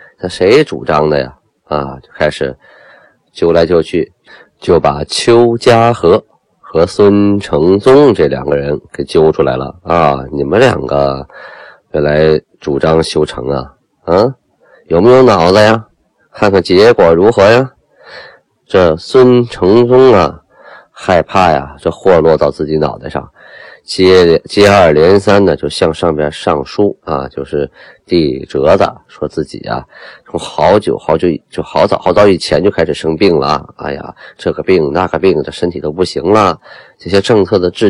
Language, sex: Chinese, male